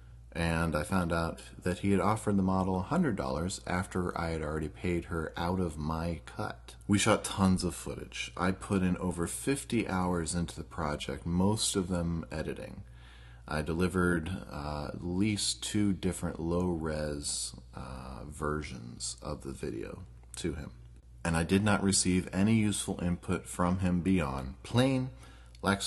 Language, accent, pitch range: English, American, 65-90 Hz